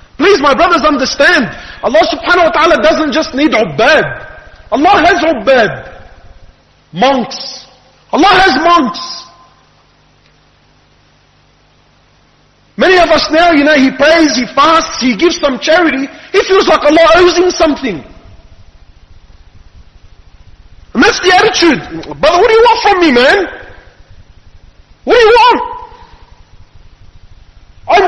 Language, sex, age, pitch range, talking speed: Malay, male, 40-59, 265-355 Hz, 120 wpm